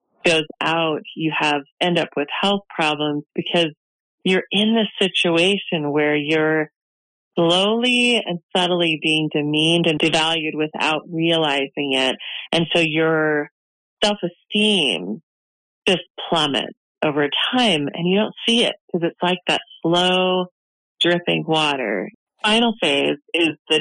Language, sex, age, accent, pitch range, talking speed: English, female, 30-49, American, 150-190 Hz, 125 wpm